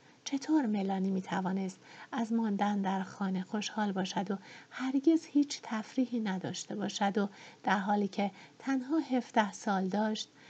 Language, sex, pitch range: Persian, female, 205-290 Hz